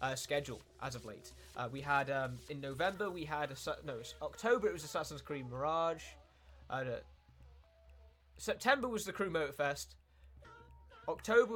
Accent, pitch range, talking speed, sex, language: British, 115-165 Hz, 155 wpm, male, Finnish